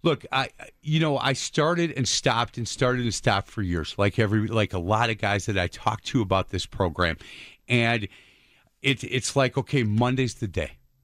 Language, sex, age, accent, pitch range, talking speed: English, male, 40-59, American, 100-130 Hz, 195 wpm